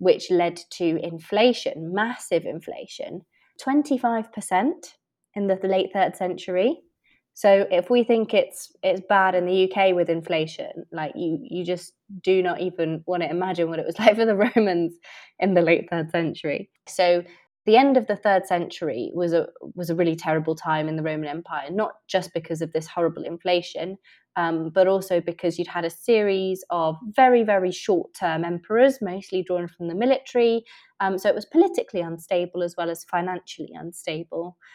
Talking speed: 175 wpm